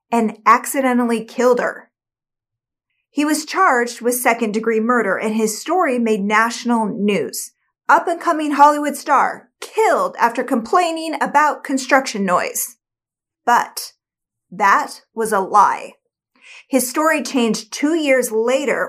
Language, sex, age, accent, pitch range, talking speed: English, female, 40-59, American, 210-275 Hz, 125 wpm